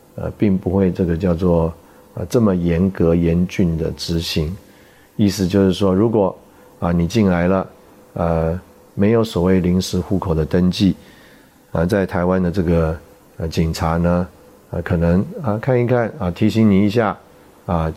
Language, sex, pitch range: Chinese, male, 85-100 Hz